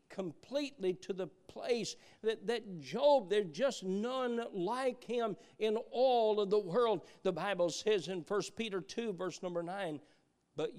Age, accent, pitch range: 50-69, American, 210-290 Hz